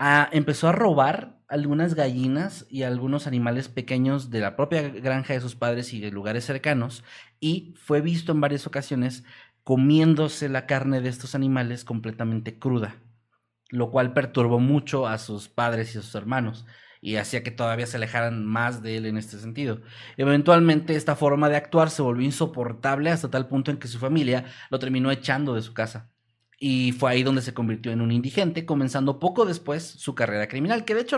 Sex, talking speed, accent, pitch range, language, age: male, 185 wpm, Mexican, 125-165 Hz, Spanish, 30-49